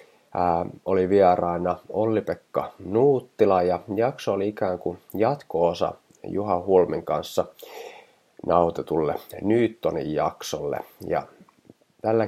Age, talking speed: 30-49, 90 wpm